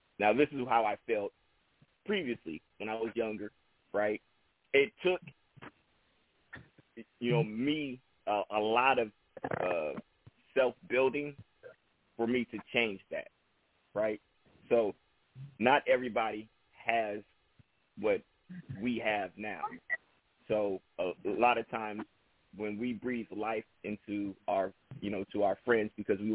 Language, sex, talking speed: English, male, 130 wpm